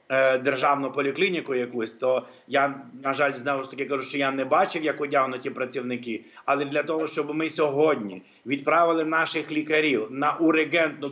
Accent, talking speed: native, 155 wpm